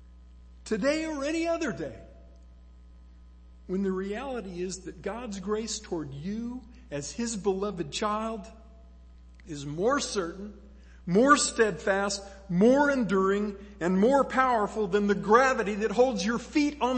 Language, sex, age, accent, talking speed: English, male, 50-69, American, 125 wpm